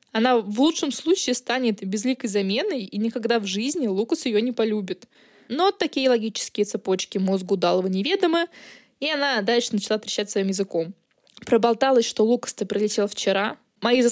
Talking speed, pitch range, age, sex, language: 150 wpm, 205-260 Hz, 20-39, female, Russian